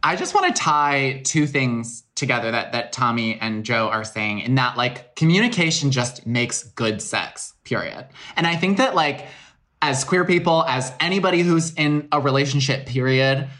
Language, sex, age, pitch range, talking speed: English, male, 20-39, 120-150 Hz, 170 wpm